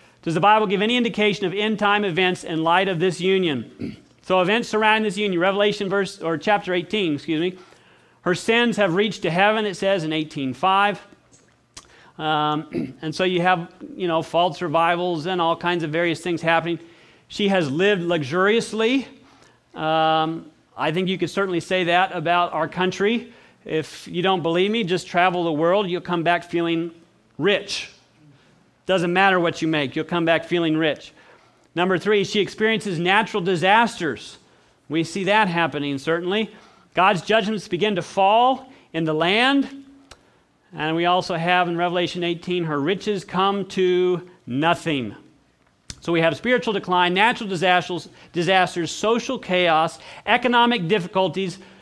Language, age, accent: English, 40-59, American